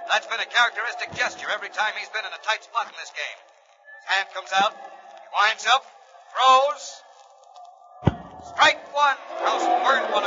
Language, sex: English, male